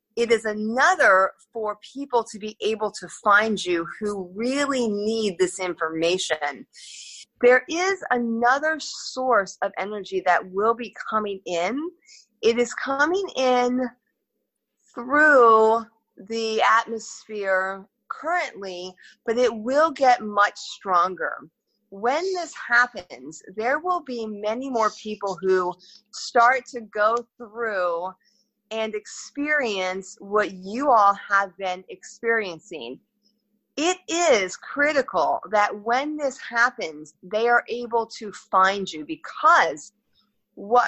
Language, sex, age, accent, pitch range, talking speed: English, female, 30-49, American, 195-255 Hz, 115 wpm